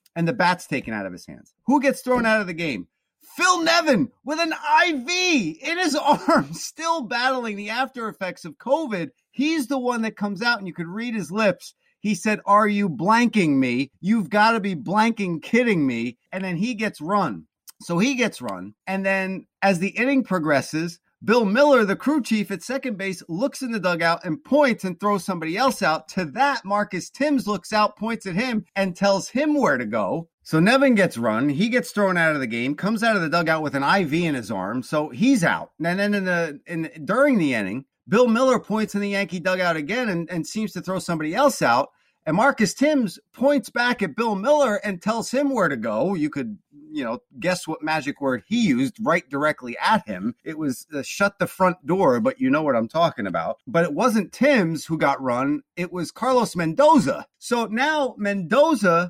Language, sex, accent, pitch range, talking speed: English, male, American, 175-255 Hz, 210 wpm